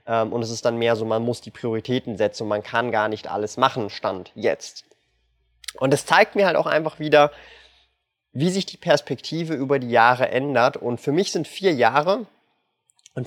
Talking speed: 190 wpm